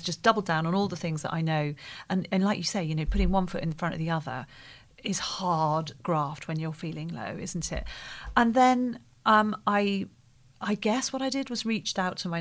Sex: female